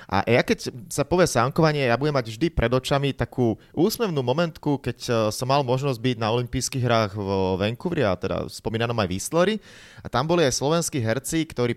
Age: 30-49